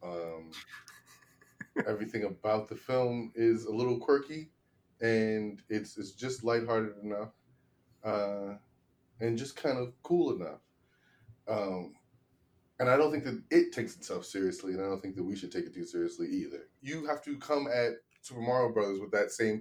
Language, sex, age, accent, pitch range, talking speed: English, male, 20-39, American, 110-155 Hz, 170 wpm